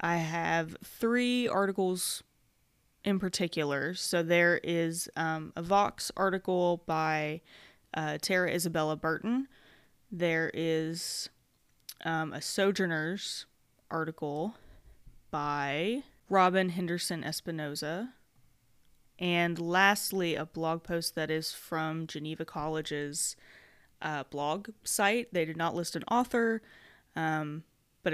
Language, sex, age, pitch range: English, female, 20-39, 155-190 Hz